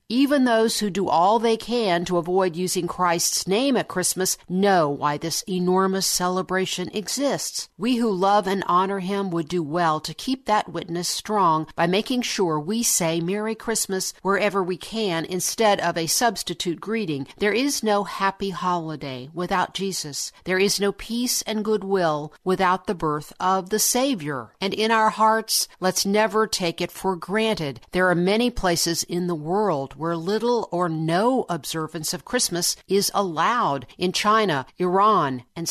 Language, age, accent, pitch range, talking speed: English, 50-69, American, 175-220 Hz, 165 wpm